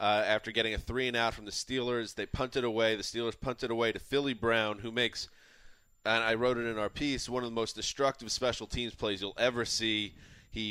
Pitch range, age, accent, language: 105-125 Hz, 30-49, American, English